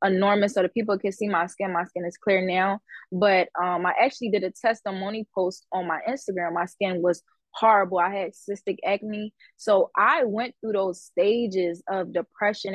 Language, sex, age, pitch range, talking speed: English, female, 20-39, 180-215 Hz, 190 wpm